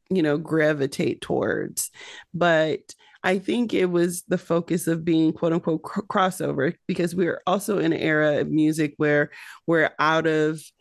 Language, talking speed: English, 165 wpm